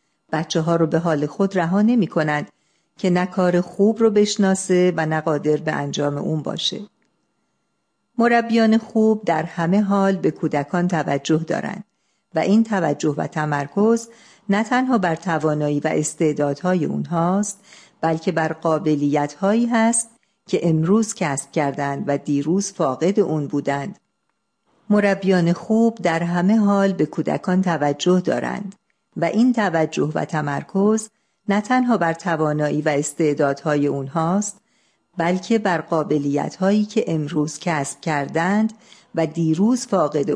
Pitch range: 155-205 Hz